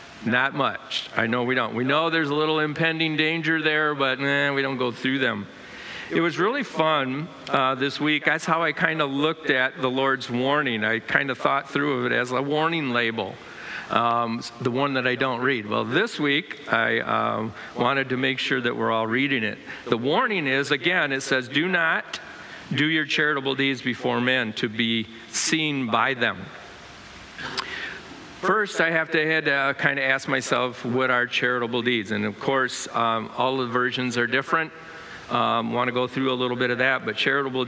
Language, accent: English, American